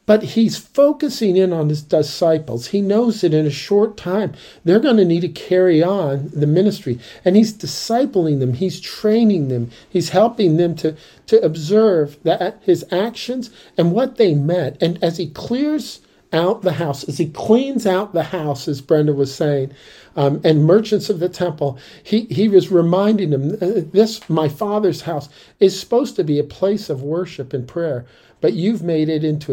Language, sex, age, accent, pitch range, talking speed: English, male, 50-69, American, 150-200 Hz, 185 wpm